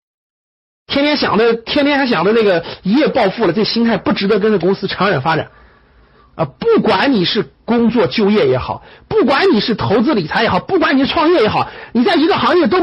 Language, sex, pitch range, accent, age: Chinese, male, 175-250 Hz, native, 50-69